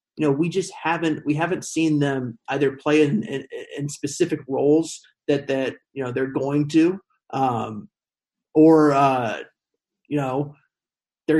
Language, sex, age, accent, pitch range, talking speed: English, male, 30-49, American, 140-160 Hz, 160 wpm